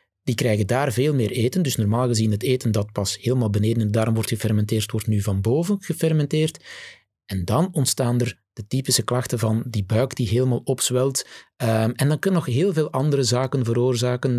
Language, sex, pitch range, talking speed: Dutch, male, 105-130 Hz, 200 wpm